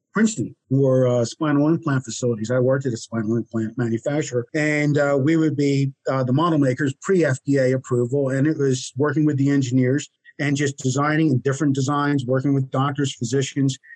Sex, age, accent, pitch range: male, 50-69, American, 130-150 Hz